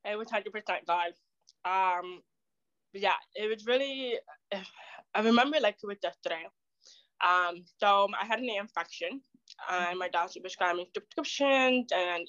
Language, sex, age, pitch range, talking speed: English, female, 20-39, 185-275 Hz, 140 wpm